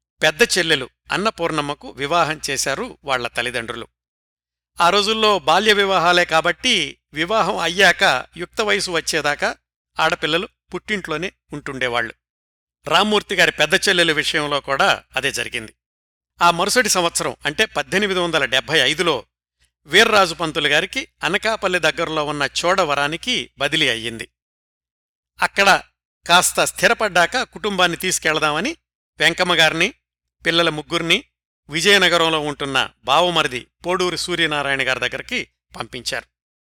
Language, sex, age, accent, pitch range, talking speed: Telugu, male, 60-79, native, 130-180 Hz, 95 wpm